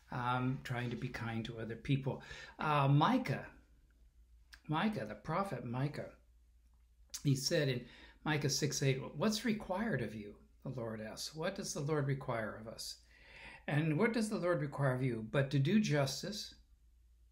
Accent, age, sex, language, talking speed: American, 60-79, male, English, 160 wpm